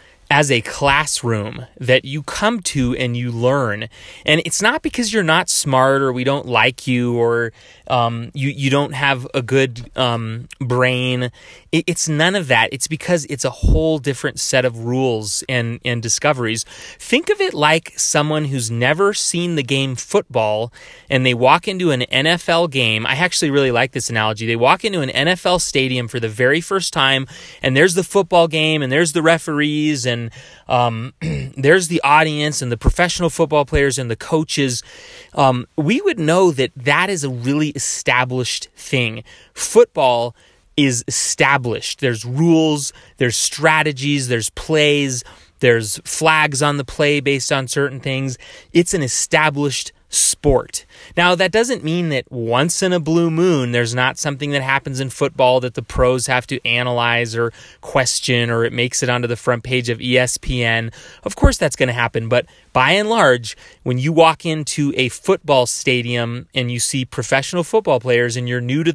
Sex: male